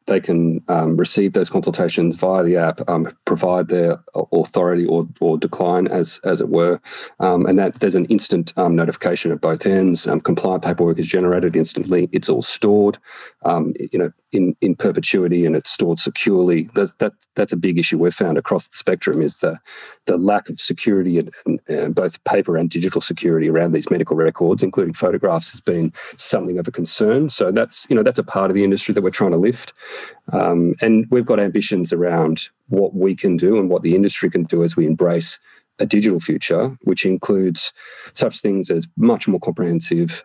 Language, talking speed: English, 195 wpm